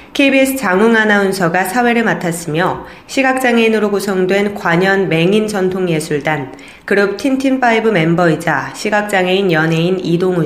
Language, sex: Korean, female